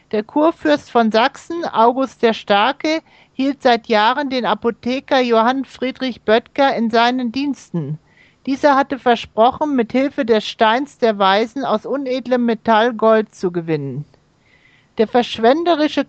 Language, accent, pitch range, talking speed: German, German, 220-275 Hz, 130 wpm